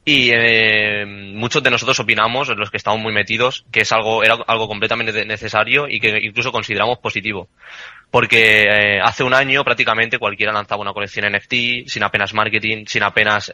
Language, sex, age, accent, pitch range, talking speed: Spanish, male, 20-39, Spanish, 105-115 Hz, 175 wpm